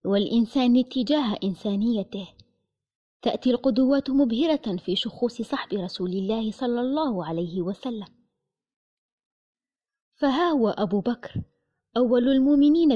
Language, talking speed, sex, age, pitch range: Arabic, 95 wpm, female, 20-39, 210-275 Hz